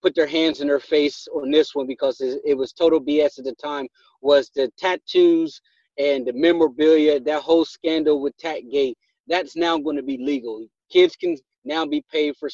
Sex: male